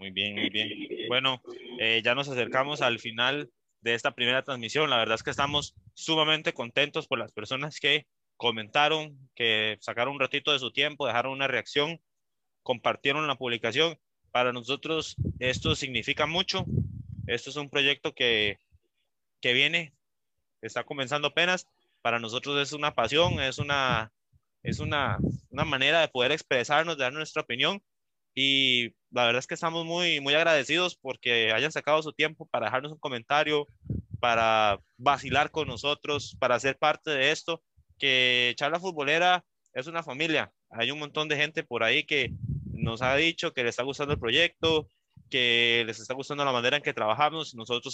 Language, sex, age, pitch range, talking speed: Spanish, male, 20-39, 120-150 Hz, 165 wpm